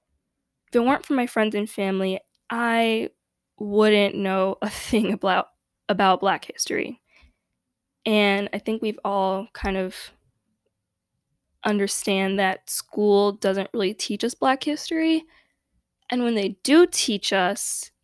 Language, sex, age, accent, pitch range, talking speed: English, female, 10-29, American, 195-235 Hz, 130 wpm